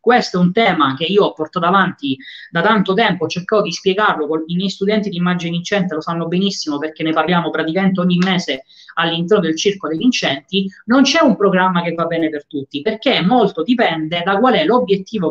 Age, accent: 20-39, native